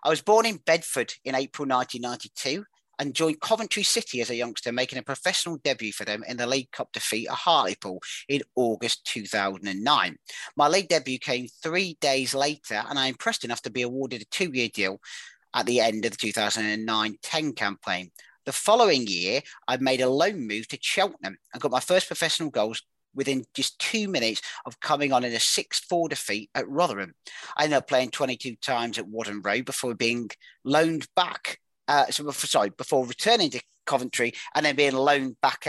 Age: 40-59